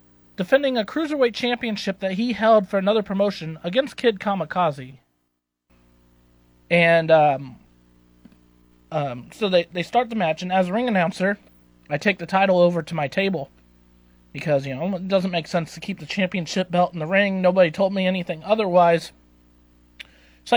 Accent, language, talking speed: American, English, 165 wpm